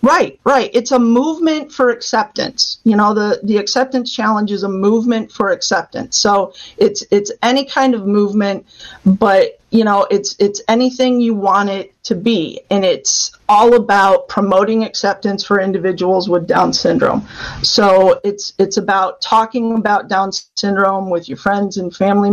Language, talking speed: English, 160 wpm